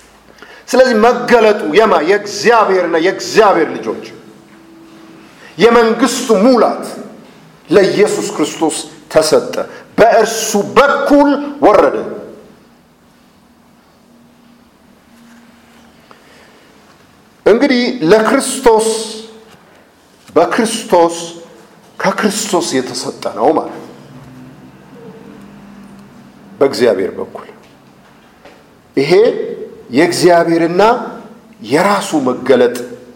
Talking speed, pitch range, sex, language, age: 40 wpm, 170-235 Hz, male, English, 50-69